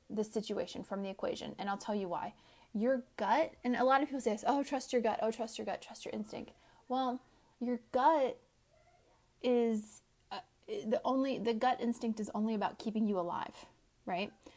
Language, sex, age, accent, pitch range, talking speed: English, female, 30-49, American, 210-245 Hz, 195 wpm